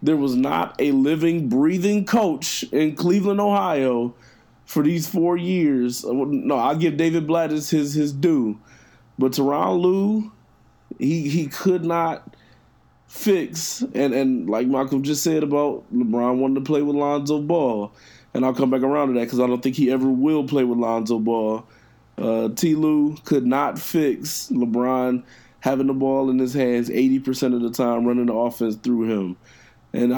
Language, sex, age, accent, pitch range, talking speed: English, male, 20-39, American, 125-155 Hz, 170 wpm